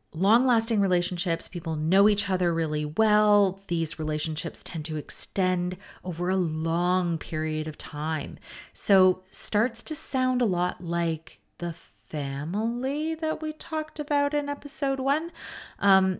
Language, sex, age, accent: English, female, 30-49, American